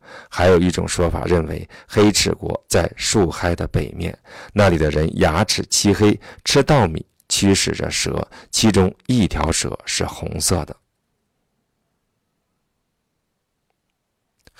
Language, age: Chinese, 50-69